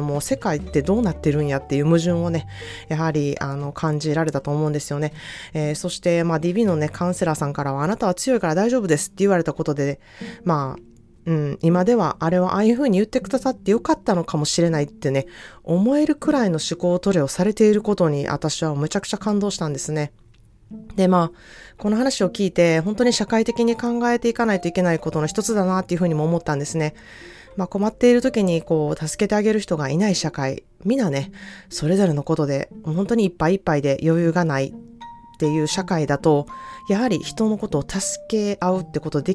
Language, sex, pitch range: Japanese, female, 150-205 Hz